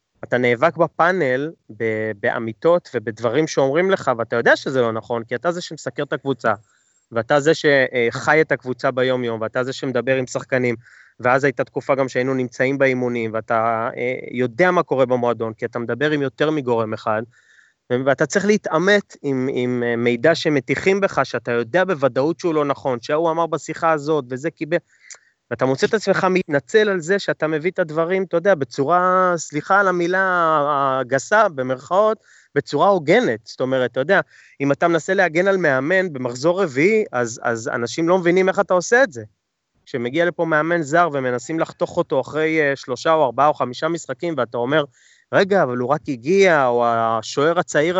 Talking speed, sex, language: 170 wpm, male, Hebrew